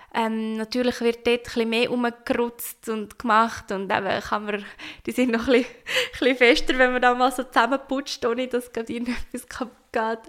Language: German